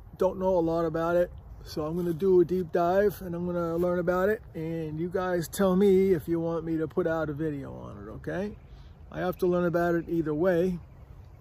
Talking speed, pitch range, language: 230 wpm, 140-180 Hz, English